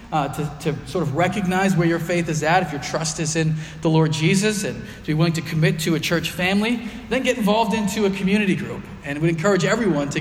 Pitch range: 150-180 Hz